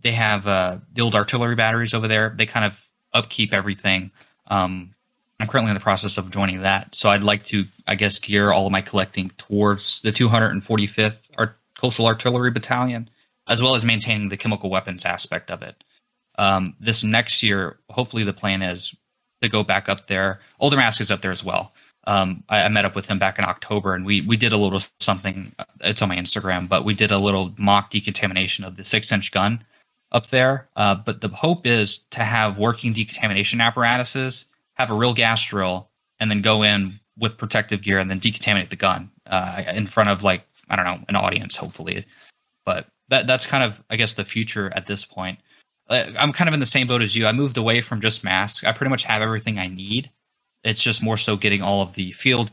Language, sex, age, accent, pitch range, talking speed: English, male, 20-39, American, 100-115 Hz, 210 wpm